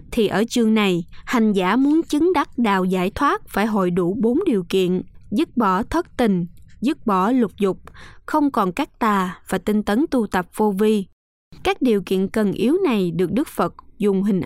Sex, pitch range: female, 190-255 Hz